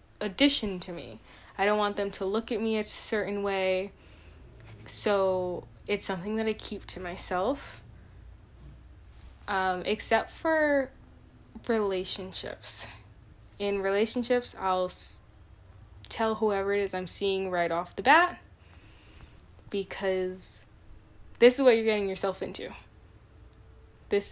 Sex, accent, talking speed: female, American, 120 wpm